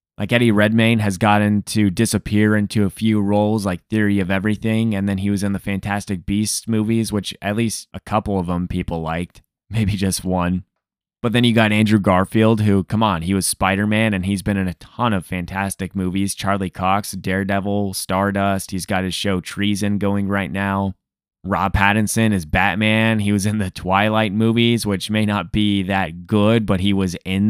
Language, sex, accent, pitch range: English, male, American, 95-110 Hz